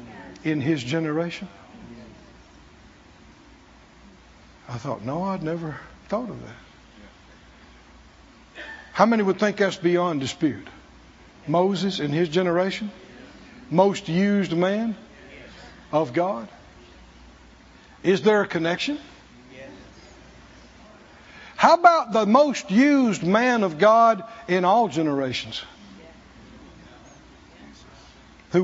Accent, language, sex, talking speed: American, English, male, 90 wpm